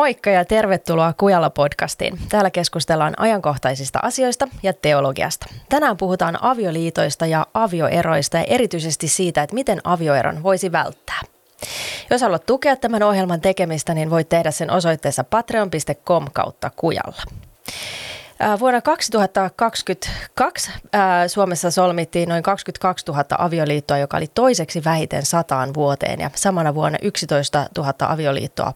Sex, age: female, 20-39